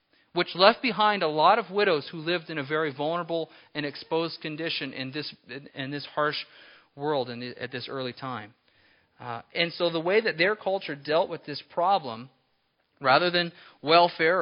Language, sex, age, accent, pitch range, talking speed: English, male, 40-59, American, 135-170 Hz, 180 wpm